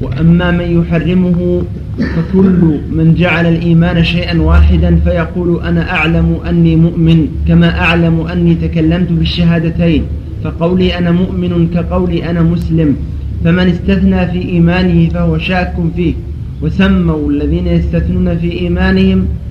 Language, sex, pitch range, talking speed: Arabic, male, 160-180 Hz, 115 wpm